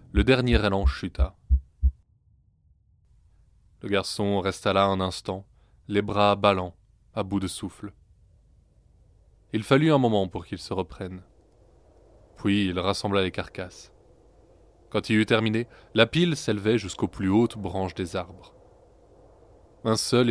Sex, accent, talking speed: male, French, 135 wpm